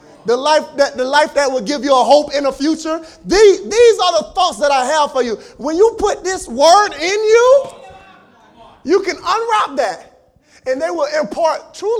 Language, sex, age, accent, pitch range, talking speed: English, male, 30-49, American, 280-340 Hz, 190 wpm